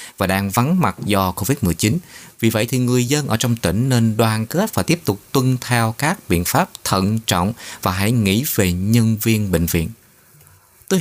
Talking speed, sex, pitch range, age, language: 200 wpm, male, 100-135 Hz, 20-39, Vietnamese